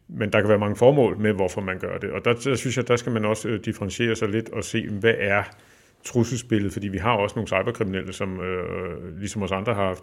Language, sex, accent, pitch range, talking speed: Danish, male, native, 95-120 Hz, 245 wpm